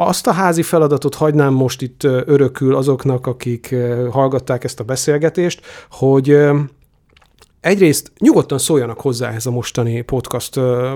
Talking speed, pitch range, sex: 125 wpm, 125-145 Hz, male